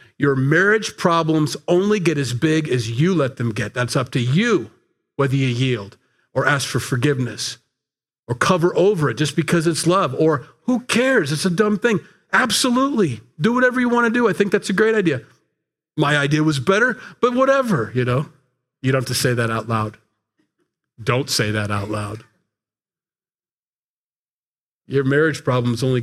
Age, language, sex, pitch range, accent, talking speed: 40-59, English, male, 125-165 Hz, American, 175 wpm